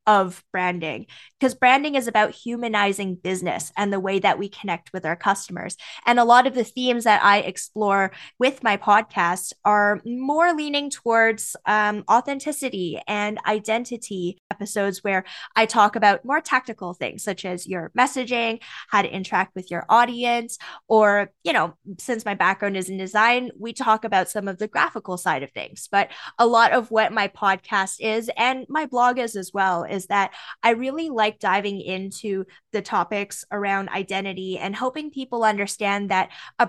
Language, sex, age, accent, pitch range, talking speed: English, female, 10-29, American, 195-240 Hz, 175 wpm